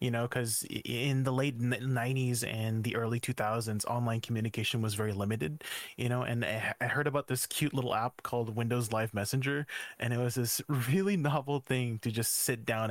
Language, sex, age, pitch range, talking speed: English, male, 20-39, 110-125 Hz, 190 wpm